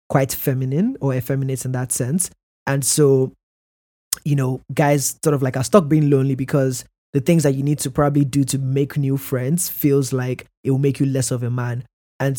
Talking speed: 210 wpm